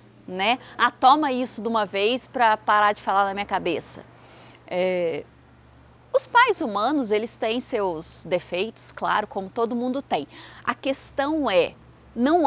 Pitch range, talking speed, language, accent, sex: 210-290 Hz, 155 wpm, Portuguese, Brazilian, female